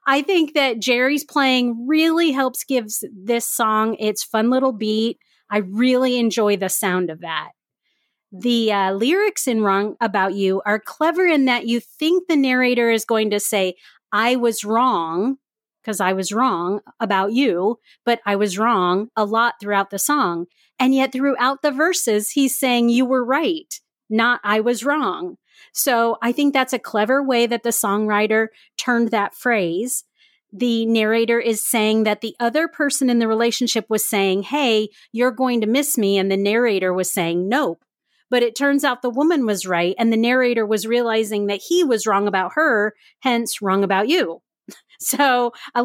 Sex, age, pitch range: female, 30-49, 210-265 Hz